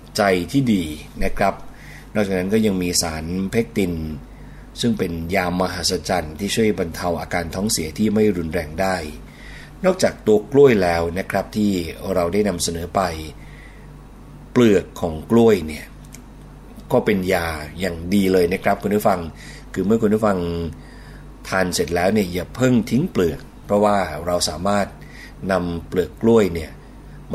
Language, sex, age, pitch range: Thai, male, 30-49, 85-105 Hz